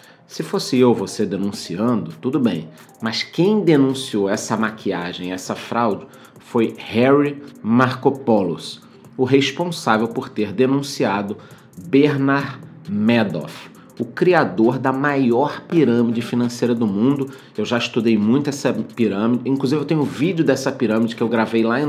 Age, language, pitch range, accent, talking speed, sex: 30-49, Portuguese, 105-130 Hz, Brazilian, 135 wpm, male